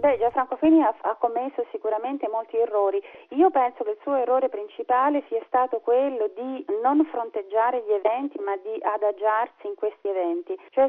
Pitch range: 205-290 Hz